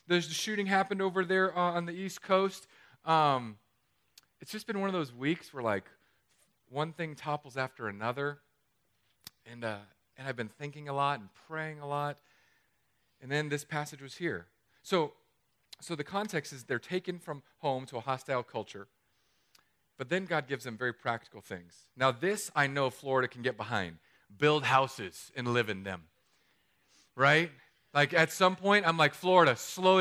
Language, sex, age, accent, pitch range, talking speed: English, male, 40-59, American, 130-170 Hz, 175 wpm